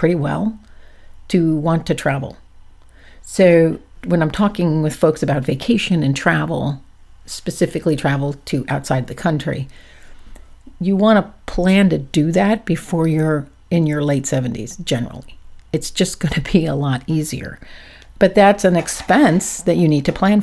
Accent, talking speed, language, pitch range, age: American, 155 wpm, English, 140-175 Hz, 50-69